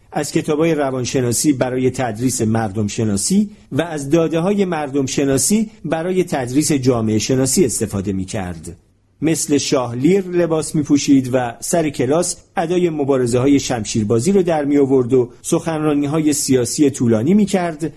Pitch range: 110-160 Hz